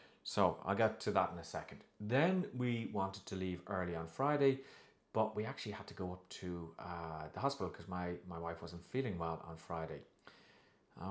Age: 30-49